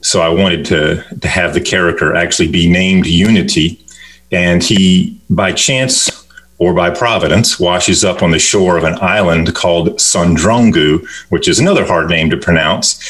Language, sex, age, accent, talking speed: English, male, 40-59, American, 165 wpm